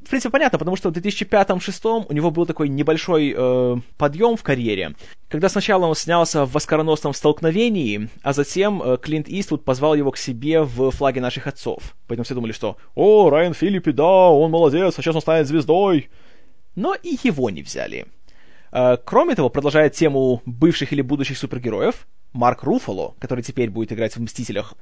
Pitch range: 130-185 Hz